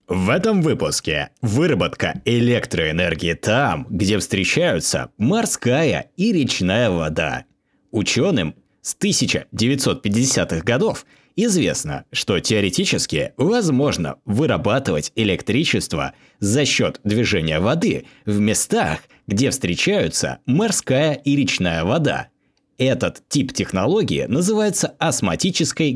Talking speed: 90 wpm